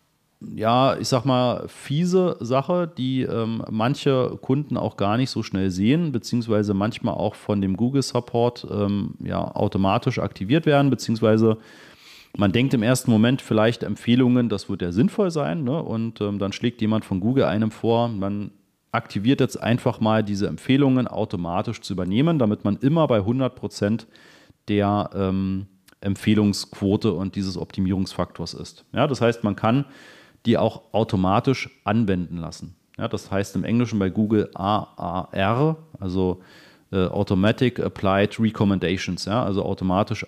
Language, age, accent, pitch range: German, 40-59, German, 95-125 Hz